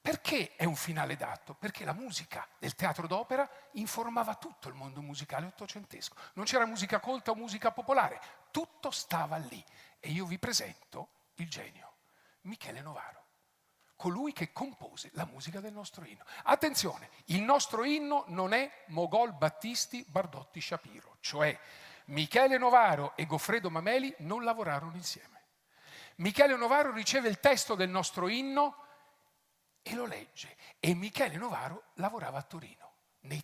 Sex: male